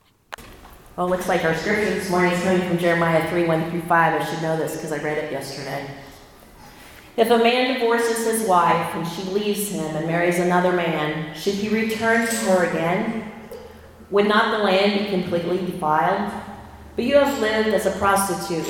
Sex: female